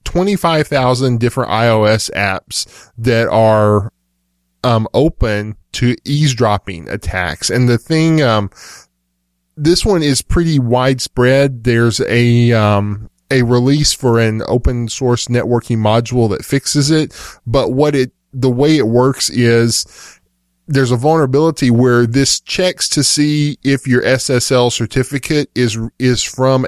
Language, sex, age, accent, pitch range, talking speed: English, male, 10-29, American, 110-130 Hz, 130 wpm